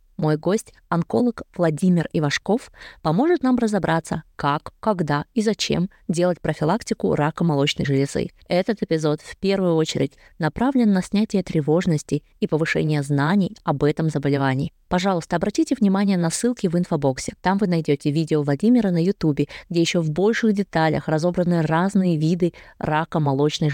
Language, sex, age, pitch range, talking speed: Russian, female, 20-39, 160-210 Hz, 140 wpm